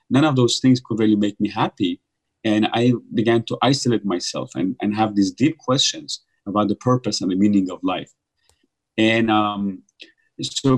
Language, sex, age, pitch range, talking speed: English, male, 30-49, 105-130 Hz, 180 wpm